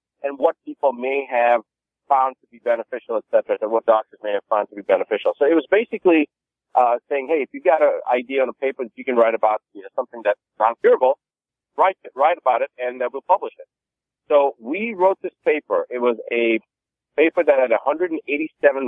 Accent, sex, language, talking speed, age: American, male, English, 210 wpm, 40-59